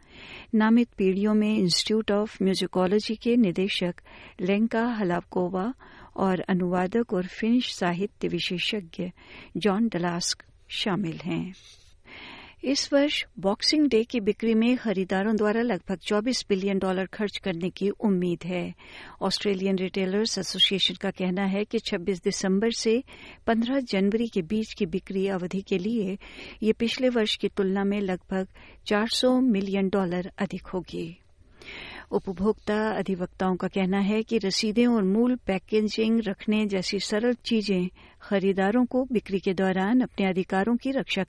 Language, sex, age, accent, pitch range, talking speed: Hindi, female, 60-79, native, 185-220 Hz, 135 wpm